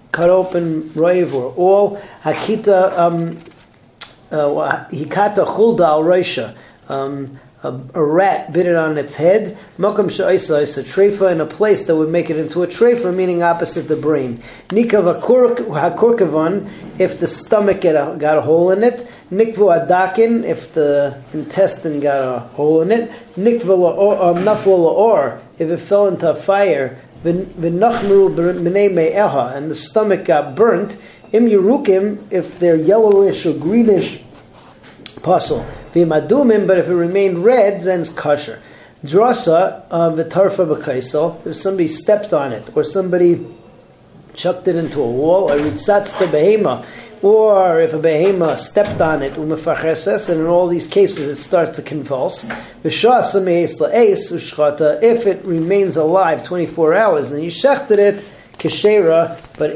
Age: 40-59